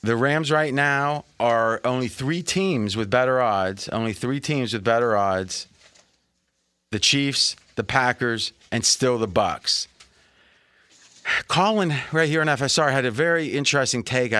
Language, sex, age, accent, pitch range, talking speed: English, male, 30-49, American, 115-140 Hz, 145 wpm